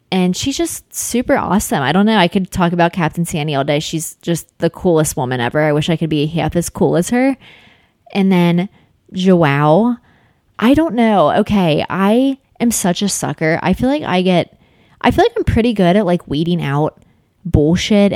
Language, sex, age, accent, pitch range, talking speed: English, female, 20-39, American, 165-220 Hz, 200 wpm